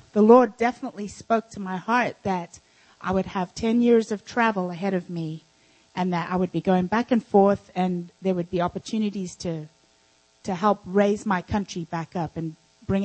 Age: 30-49